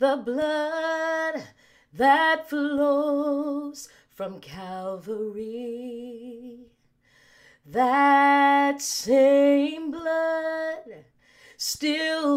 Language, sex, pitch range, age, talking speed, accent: English, female, 225-285 Hz, 30-49, 50 wpm, American